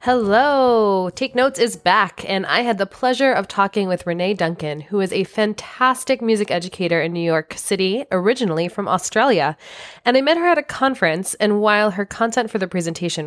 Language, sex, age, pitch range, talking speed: English, female, 20-39, 175-225 Hz, 190 wpm